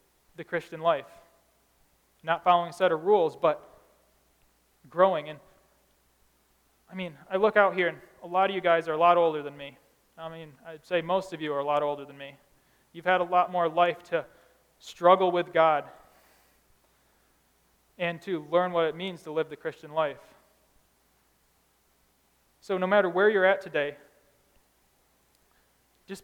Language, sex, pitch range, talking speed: English, male, 150-185 Hz, 165 wpm